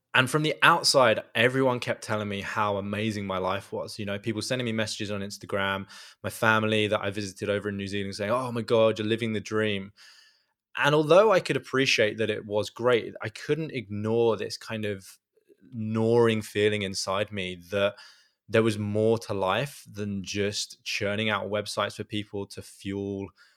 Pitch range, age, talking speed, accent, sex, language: 100-115 Hz, 20-39, 185 wpm, British, male, English